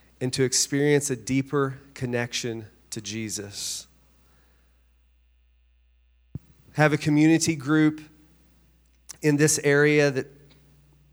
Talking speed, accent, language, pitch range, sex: 85 wpm, American, English, 115-145 Hz, male